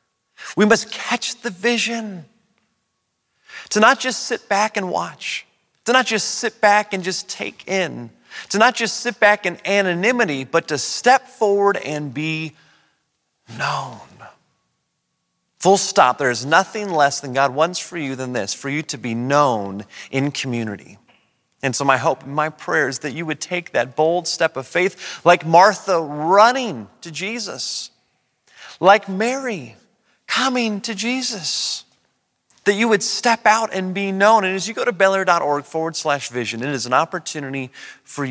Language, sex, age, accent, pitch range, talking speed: English, male, 30-49, American, 145-210 Hz, 165 wpm